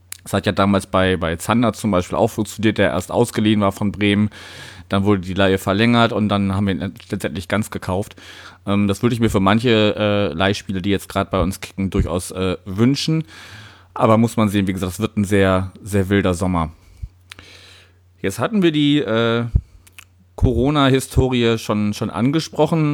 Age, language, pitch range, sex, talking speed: 30-49, German, 100-120 Hz, male, 175 wpm